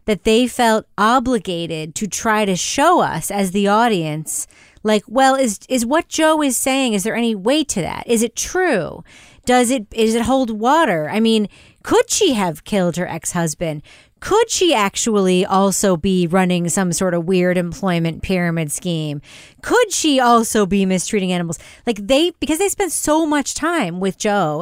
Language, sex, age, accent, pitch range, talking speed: English, female, 30-49, American, 185-245 Hz, 175 wpm